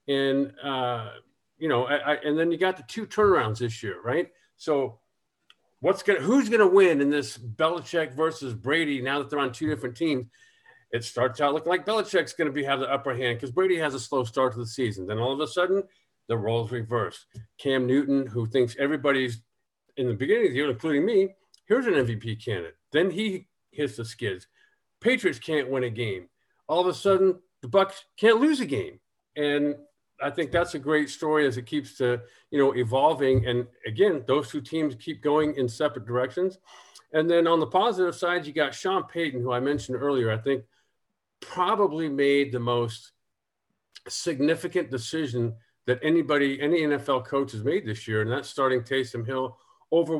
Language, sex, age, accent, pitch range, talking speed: English, male, 50-69, American, 130-180 Hz, 190 wpm